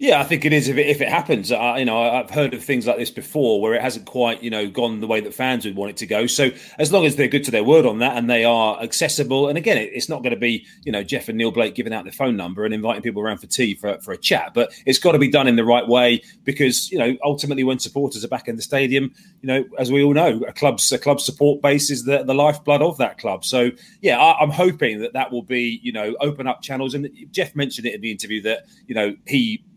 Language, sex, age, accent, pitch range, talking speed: English, male, 30-49, British, 115-145 Hz, 290 wpm